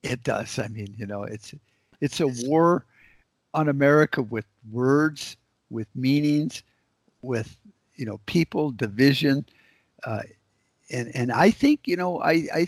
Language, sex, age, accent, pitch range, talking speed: English, male, 60-79, American, 110-140 Hz, 140 wpm